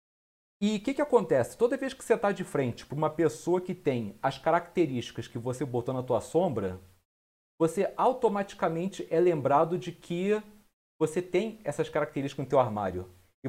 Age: 40-59